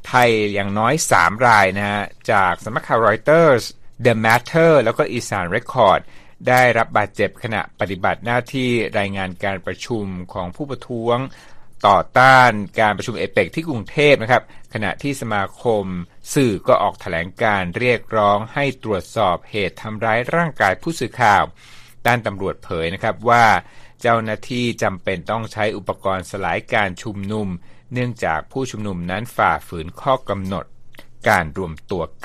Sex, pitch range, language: male, 100-125 Hz, Thai